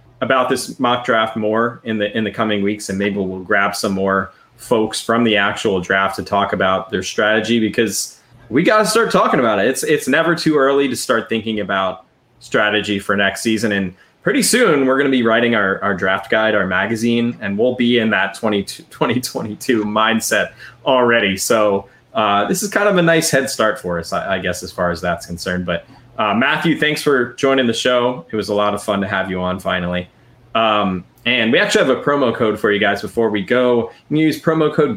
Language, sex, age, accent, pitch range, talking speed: English, male, 20-39, American, 100-135 Hz, 220 wpm